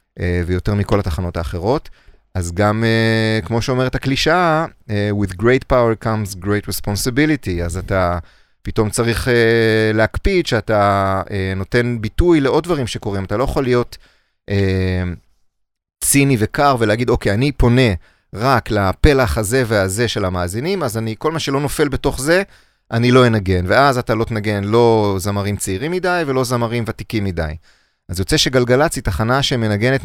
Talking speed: 150 wpm